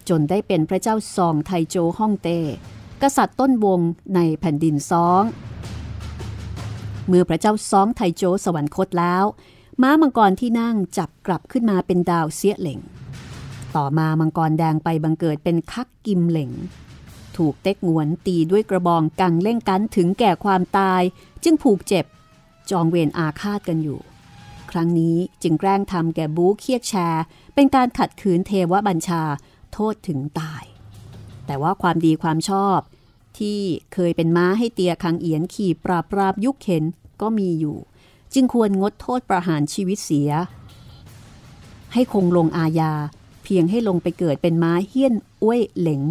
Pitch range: 160-195 Hz